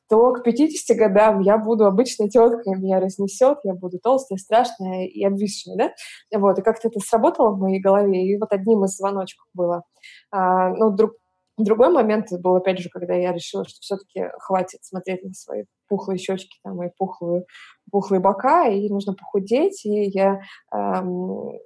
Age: 20-39